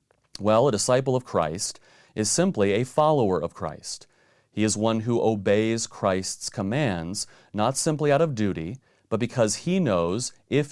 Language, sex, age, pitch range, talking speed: English, male, 30-49, 100-130 Hz, 155 wpm